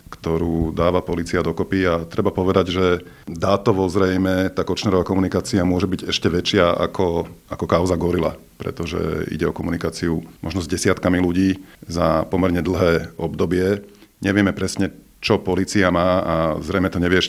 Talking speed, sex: 145 wpm, male